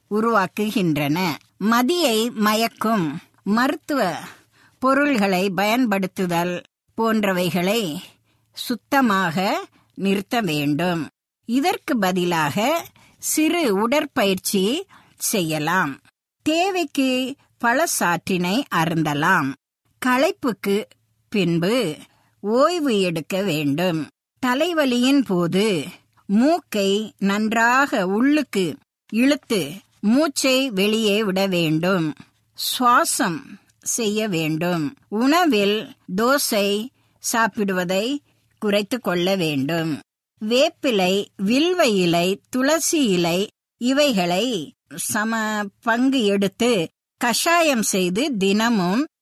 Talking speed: 65 wpm